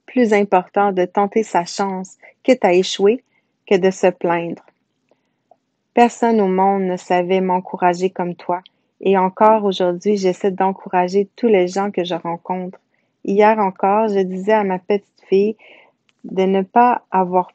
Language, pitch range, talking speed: French, 185-210 Hz, 150 wpm